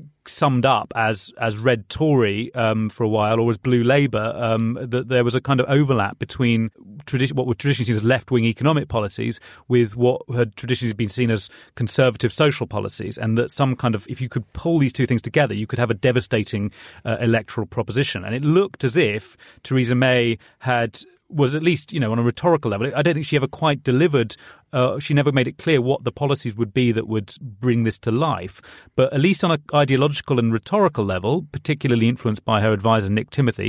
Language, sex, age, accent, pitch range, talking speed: English, male, 30-49, British, 110-140 Hz, 215 wpm